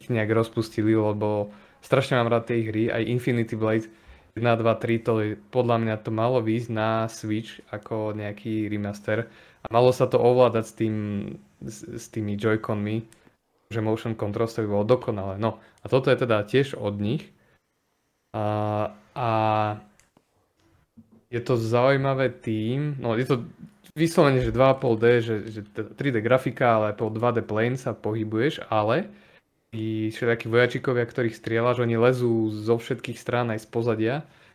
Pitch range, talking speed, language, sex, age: 110-120 Hz, 150 wpm, Slovak, male, 20-39